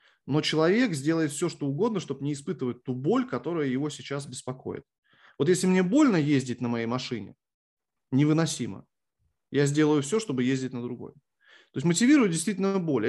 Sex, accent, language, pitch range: male, native, Russian, 125-165 Hz